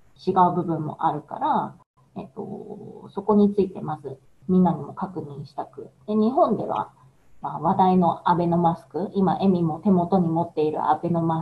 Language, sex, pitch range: Japanese, female, 160-210 Hz